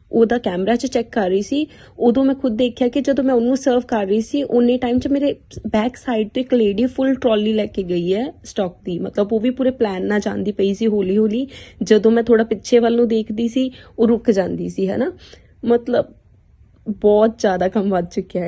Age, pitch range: 20-39, 200-235 Hz